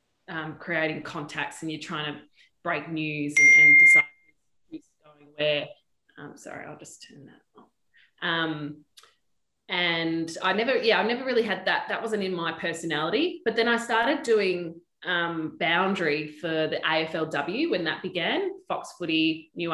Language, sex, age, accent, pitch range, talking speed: English, female, 20-39, Australian, 150-185 Hz, 160 wpm